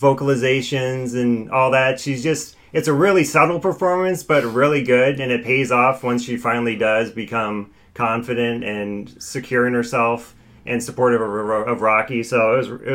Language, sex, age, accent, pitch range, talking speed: English, male, 30-49, American, 115-130 Hz, 165 wpm